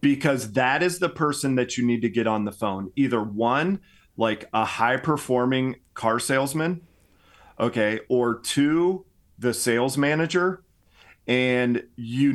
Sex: male